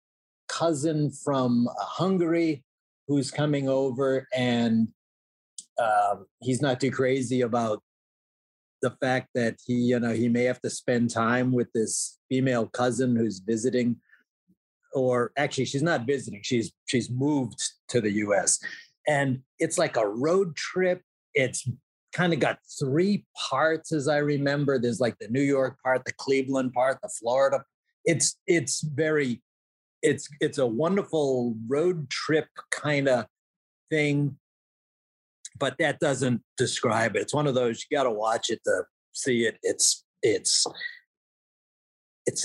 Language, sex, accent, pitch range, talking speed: English, male, American, 125-155 Hz, 145 wpm